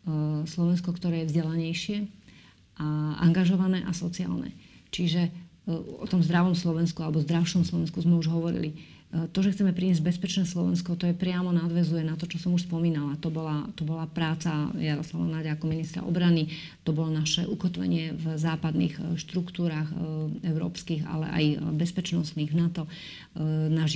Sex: female